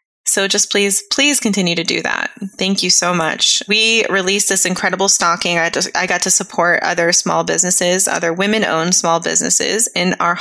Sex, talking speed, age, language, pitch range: female, 185 wpm, 20-39, English, 175-225 Hz